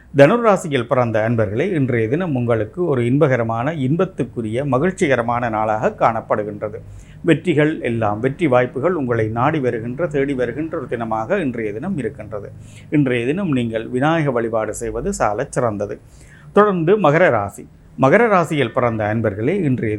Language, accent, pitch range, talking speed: Tamil, native, 110-145 Hz, 120 wpm